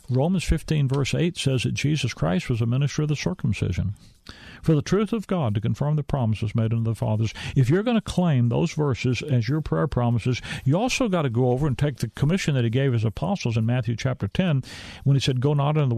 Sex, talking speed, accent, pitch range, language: male, 235 wpm, American, 120-155 Hz, English